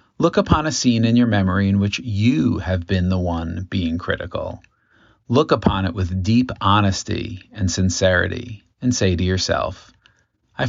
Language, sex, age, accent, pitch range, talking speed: English, male, 40-59, American, 95-110 Hz, 165 wpm